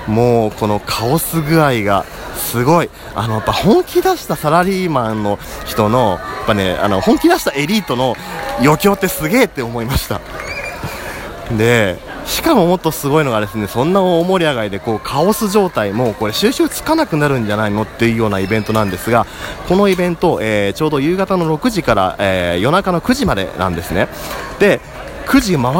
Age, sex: 30-49, male